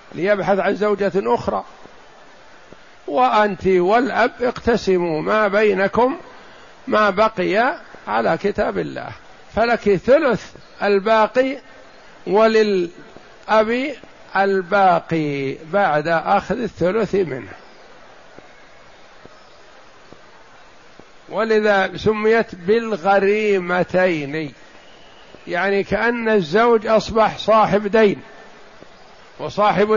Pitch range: 180-220 Hz